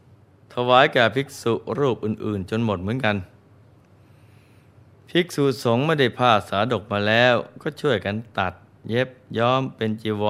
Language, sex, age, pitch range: Thai, male, 20-39, 105-125 Hz